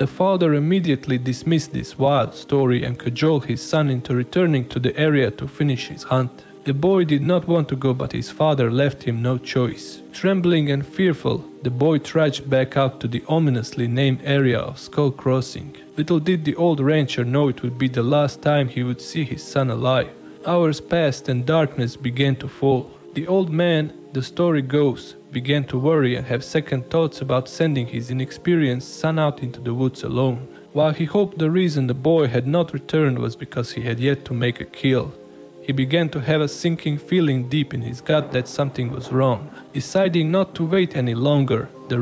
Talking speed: 200 wpm